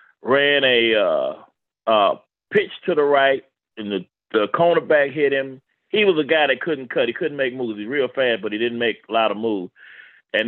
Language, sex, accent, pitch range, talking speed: English, male, American, 120-160 Hz, 210 wpm